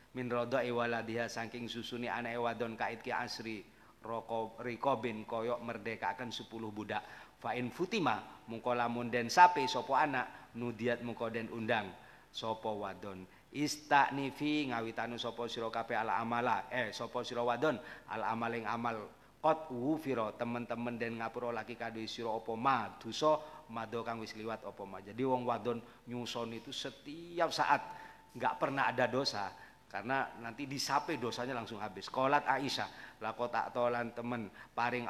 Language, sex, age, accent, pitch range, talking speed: Indonesian, male, 40-59, native, 115-120 Hz, 145 wpm